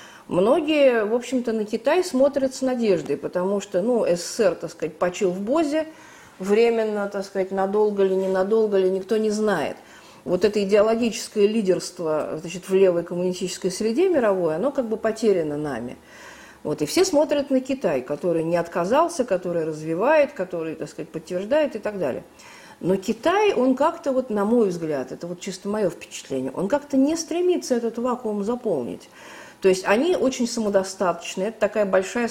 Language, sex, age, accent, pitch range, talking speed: Russian, female, 50-69, native, 180-225 Hz, 155 wpm